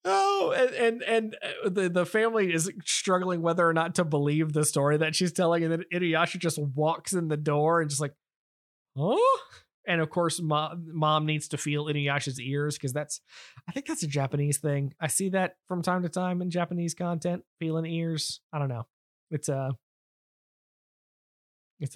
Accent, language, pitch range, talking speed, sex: American, English, 135-170 Hz, 185 wpm, male